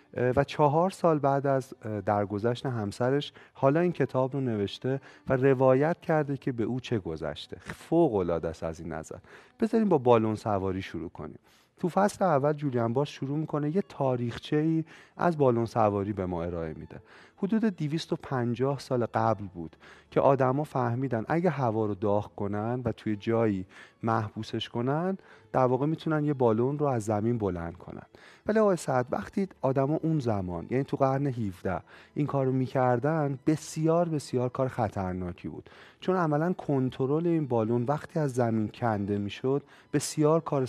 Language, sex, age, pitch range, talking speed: Persian, male, 30-49, 110-150 Hz, 165 wpm